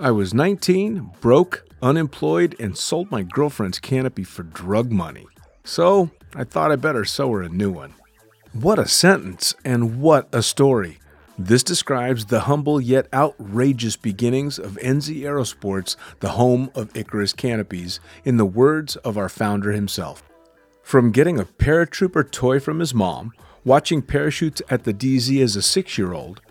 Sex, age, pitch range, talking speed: male, 40-59, 105-145 Hz, 155 wpm